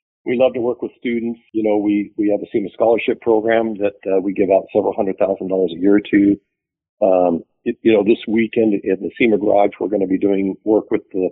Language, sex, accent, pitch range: English, male, American, 95-120 Hz